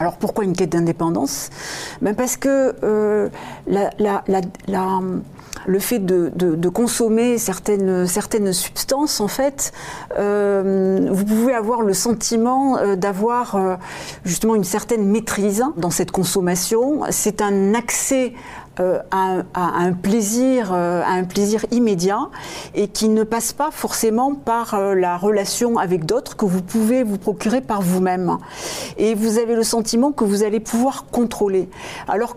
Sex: female